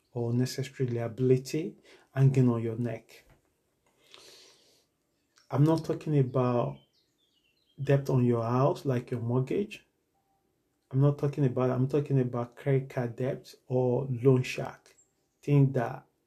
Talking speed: 120 wpm